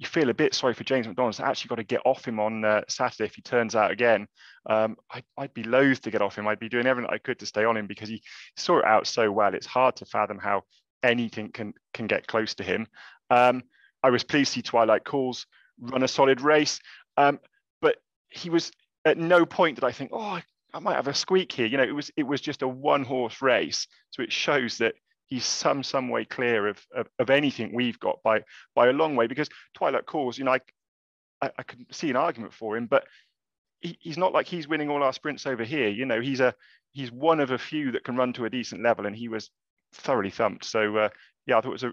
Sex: male